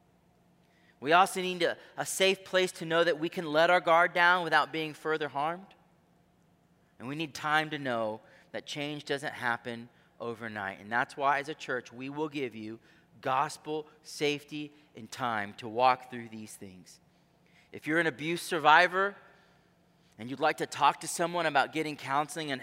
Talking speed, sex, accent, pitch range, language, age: 175 wpm, male, American, 145-175 Hz, English, 30-49